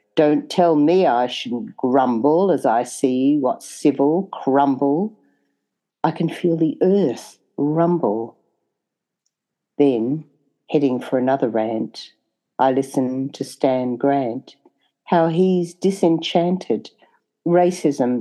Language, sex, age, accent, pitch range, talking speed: English, female, 50-69, Australian, 130-170 Hz, 105 wpm